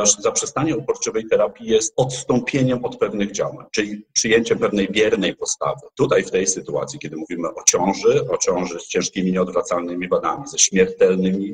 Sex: male